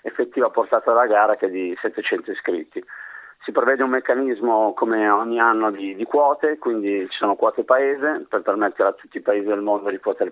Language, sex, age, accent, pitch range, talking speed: Italian, male, 30-49, native, 105-160 Hz, 200 wpm